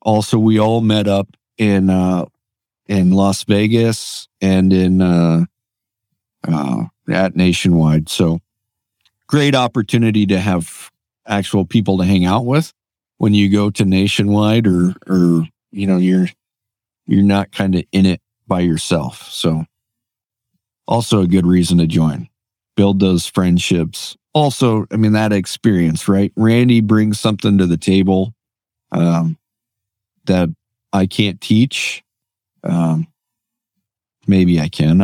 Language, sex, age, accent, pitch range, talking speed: English, male, 50-69, American, 90-110 Hz, 130 wpm